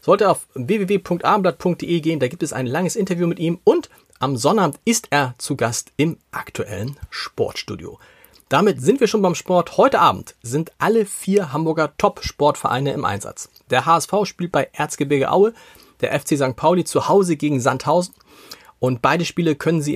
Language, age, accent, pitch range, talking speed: German, 40-59, German, 130-180 Hz, 170 wpm